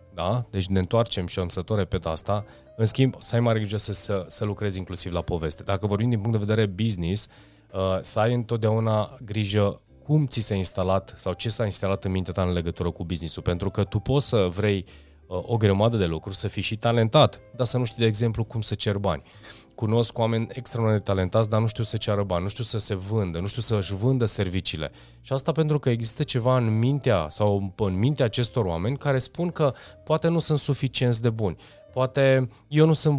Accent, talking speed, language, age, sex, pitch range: native, 215 wpm, Romanian, 30-49, male, 100-125 Hz